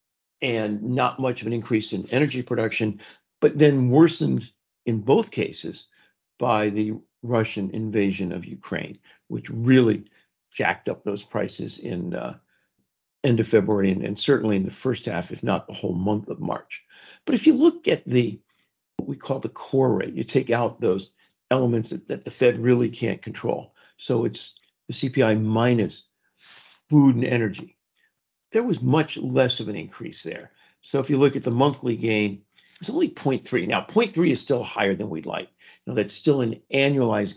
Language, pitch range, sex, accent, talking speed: English, 110-160 Hz, male, American, 175 wpm